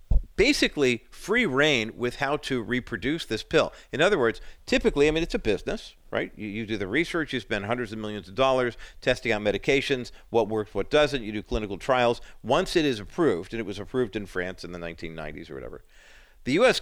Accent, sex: American, male